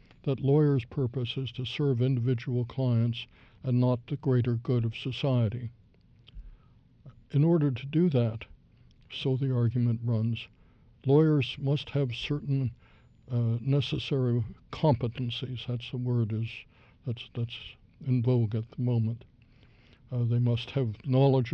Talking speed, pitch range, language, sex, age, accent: 130 wpm, 115-130 Hz, English, male, 60-79, American